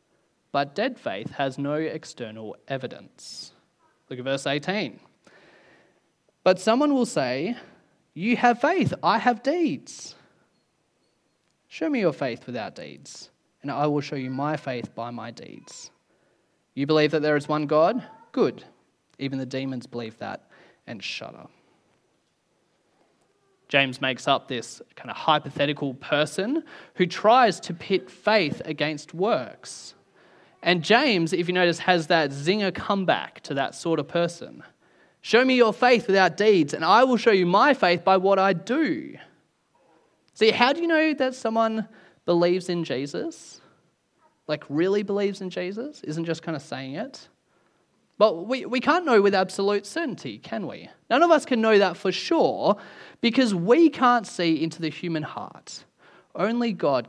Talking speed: 155 wpm